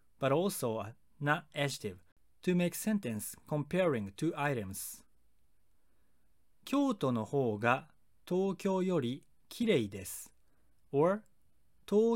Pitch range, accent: 105-175 Hz, native